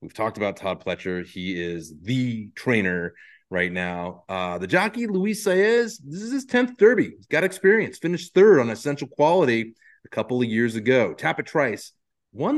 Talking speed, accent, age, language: 175 wpm, American, 30-49, English